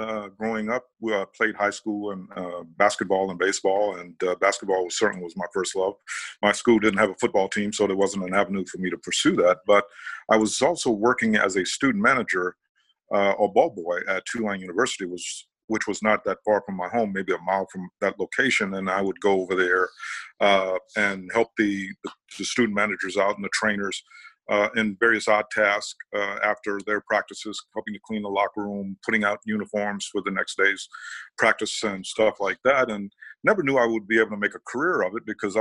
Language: English